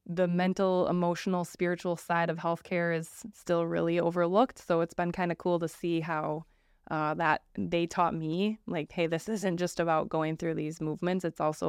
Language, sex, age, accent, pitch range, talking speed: English, female, 20-39, American, 155-180 Hz, 190 wpm